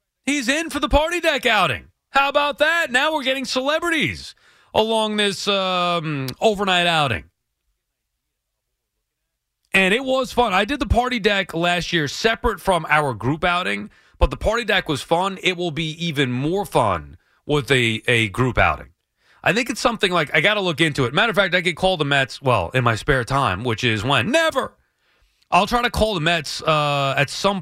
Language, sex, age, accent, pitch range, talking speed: English, male, 30-49, American, 120-190 Hz, 195 wpm